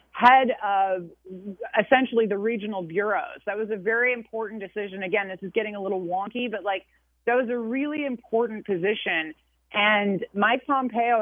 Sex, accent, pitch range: female, American, 195-235 Hz